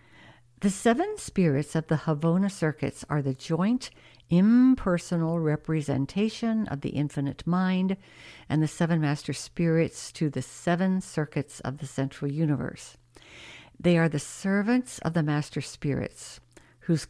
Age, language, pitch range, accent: 60-79, English, 145-190 Hz, American